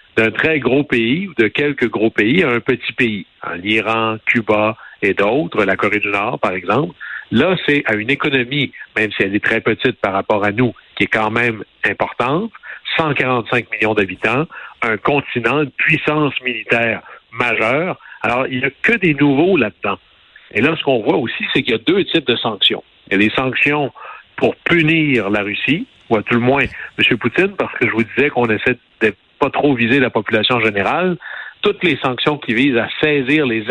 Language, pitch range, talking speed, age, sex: French, 115-145 Hz, 205 wpm, 60-79, male